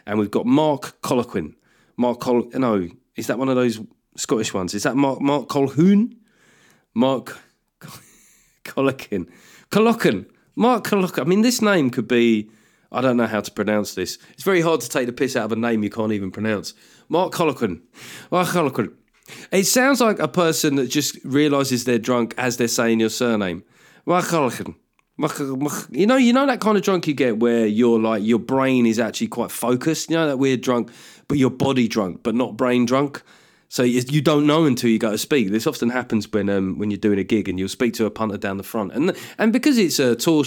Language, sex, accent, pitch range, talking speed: English, male, British, 110-155 Hz, 210 wpm